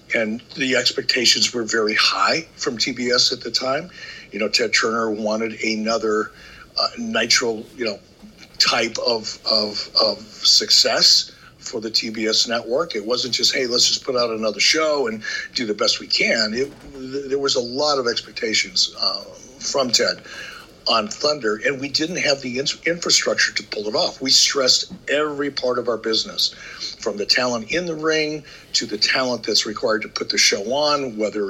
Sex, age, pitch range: male, 60-79, 110-140 Hz